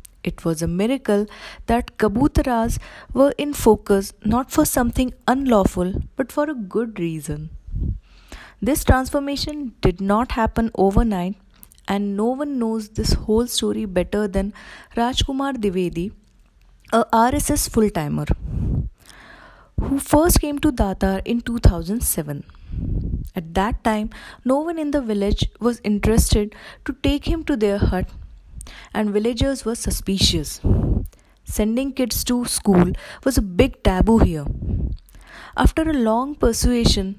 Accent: native